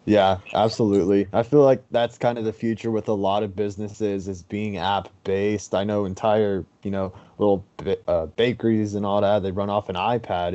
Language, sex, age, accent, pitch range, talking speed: English, male, 20-39, American, 100-120 Hz, 205 wpm